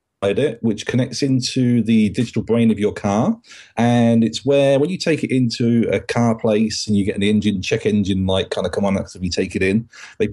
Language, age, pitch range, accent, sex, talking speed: English, 40-59, 105-130 Hz, British, male, 225 wpm